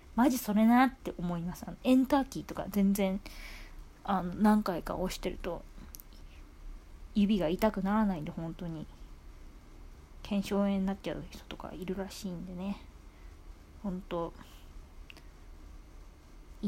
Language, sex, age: Japanese, female, 20-39